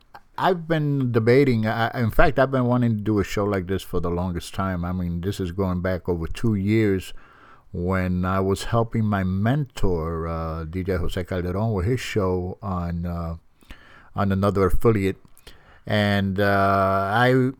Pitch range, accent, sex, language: 90-115 Hz, American, male, English